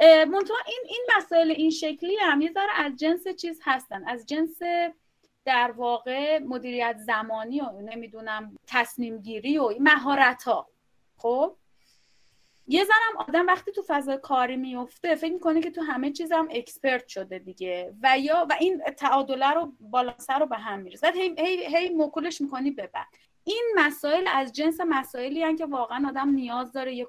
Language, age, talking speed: Persian, 30-49, 170 wpm